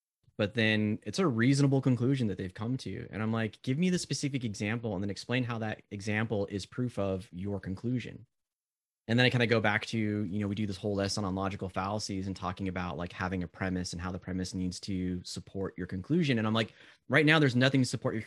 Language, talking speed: English, 240 wpm